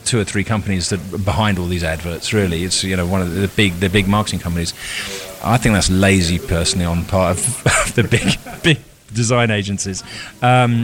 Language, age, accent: English, 30-49, British